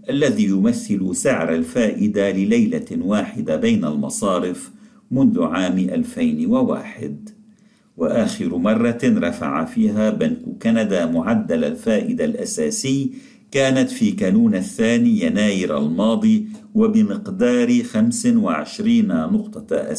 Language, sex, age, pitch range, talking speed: Arabic, male, 50-69, 215-245 Hz, 85 wpm